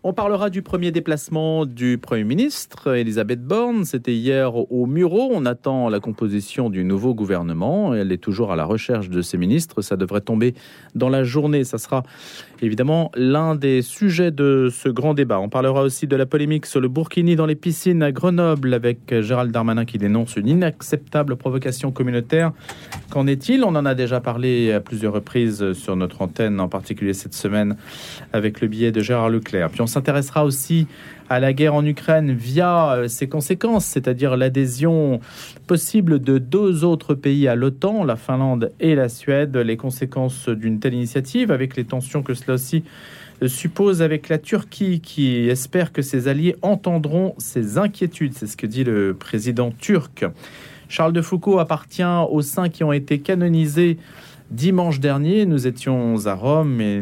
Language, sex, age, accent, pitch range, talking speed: French, male, 40-59, French, 115-160 Hz, 175 wpm